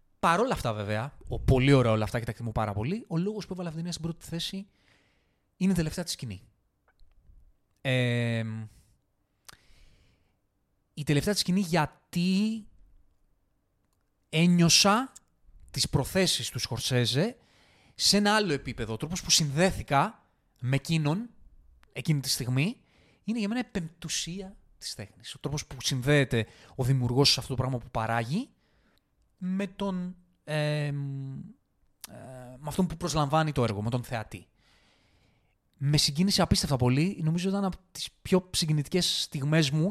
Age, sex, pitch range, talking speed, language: 20-39, male, 120-180 Hz, 145 wpm, Greek